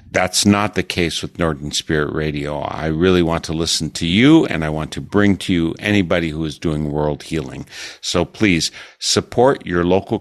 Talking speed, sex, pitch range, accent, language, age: 195 wpm, male, 80-95 Hz, American, English, 50-69